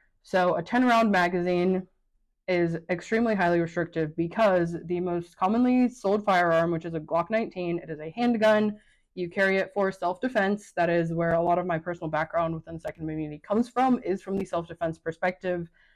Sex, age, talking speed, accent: female, 20-39, 180 wpm, American